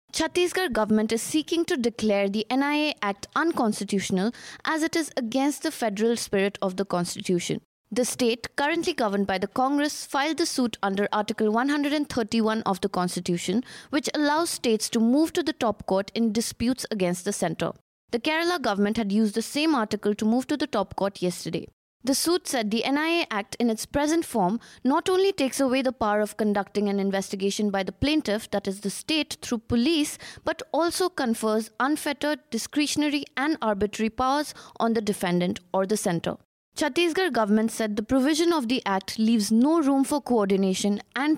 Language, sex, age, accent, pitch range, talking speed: English, female, 20-39, Indian, 200-290 Hz, 175 wpm